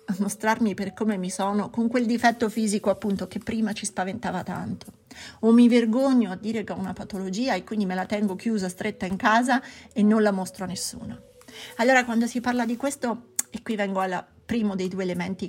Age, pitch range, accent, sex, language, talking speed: 30-49, 190-230 Hz, native, female, Italian, 210 wpm